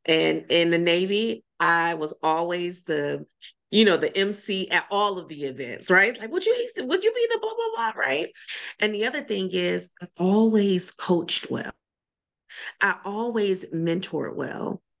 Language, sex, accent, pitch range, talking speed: English, female, American, 175-240 Hz, 165 wpm